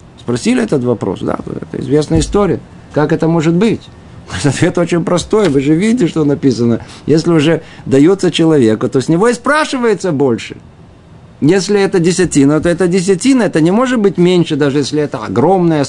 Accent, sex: native, male